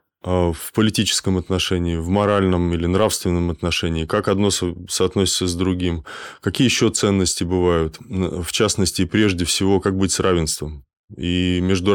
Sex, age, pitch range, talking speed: male, 20-39, 85-100 Hz, 135 wpm